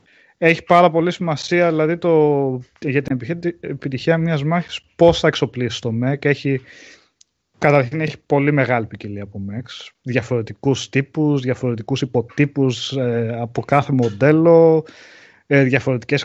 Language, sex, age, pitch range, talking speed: Greek, male, 30-49, 125-155 Hz, 110 wpm